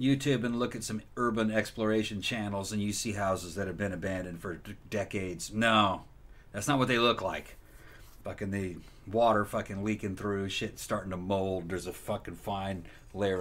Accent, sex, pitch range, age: American, male, 100-125 Hz, 50-69